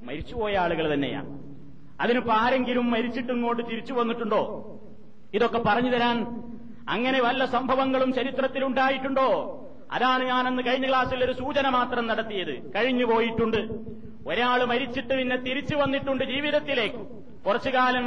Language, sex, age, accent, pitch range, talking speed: Malayalam, male, 30-49, native, 230-255 Hz, 105 wpm